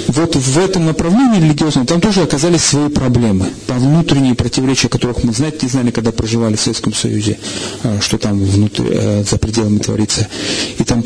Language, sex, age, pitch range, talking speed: Russian, male, 40-59, 120-160 Hz, 165 wpm